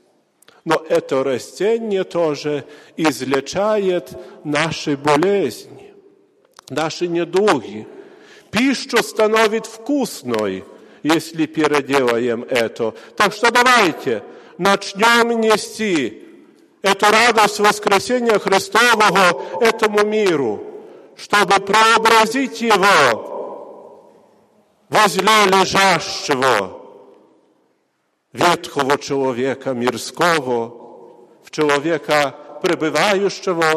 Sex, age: male, 50-69